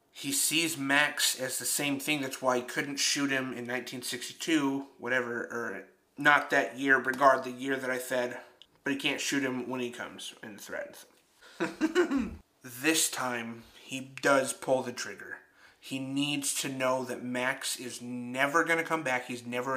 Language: English